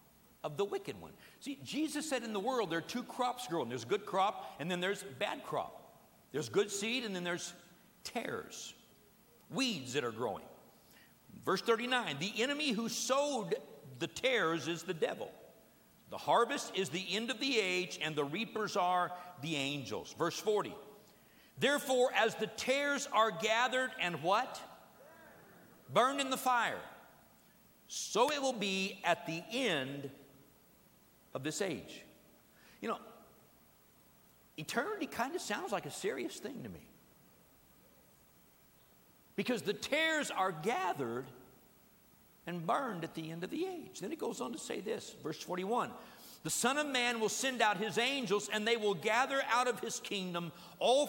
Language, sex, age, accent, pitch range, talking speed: English, male, 50-69, American, 180-255 Hz, 160 wpm